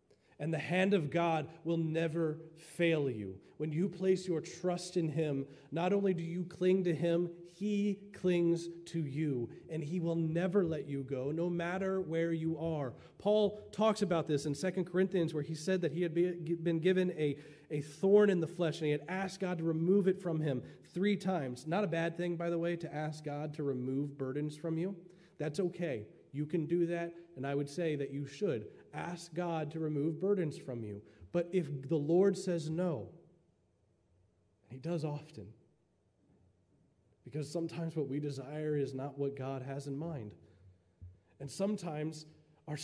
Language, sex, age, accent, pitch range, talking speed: English, male, 30-49, American, 130-175 Hz, 185 wpm